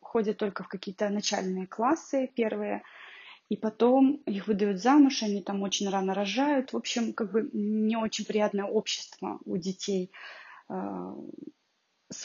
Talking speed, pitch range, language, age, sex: 140 wpm, 195-225 Hz, Russian, 20-39, female